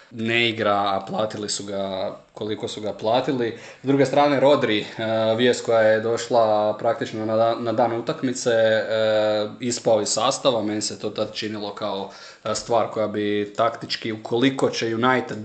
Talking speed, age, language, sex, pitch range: 150 wpm, 20-39, Croatian, male, 105-120 Hz